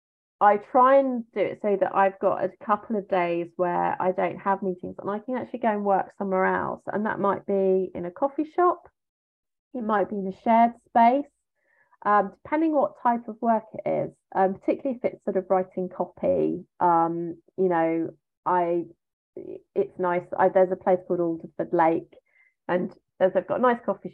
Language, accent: English, British